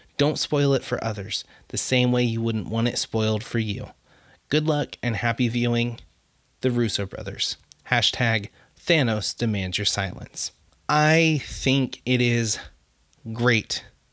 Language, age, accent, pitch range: English, 20-39, American, 115-140 Hz